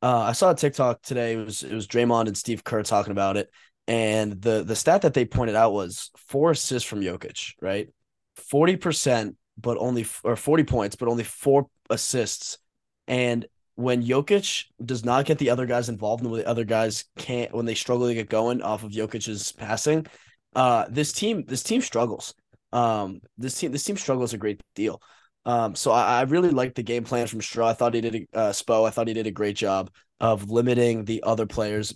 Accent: American